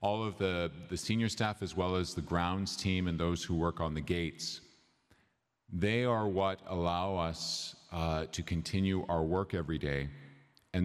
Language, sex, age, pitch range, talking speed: English, male, 40-59, 80-95 Hz, 175 wpm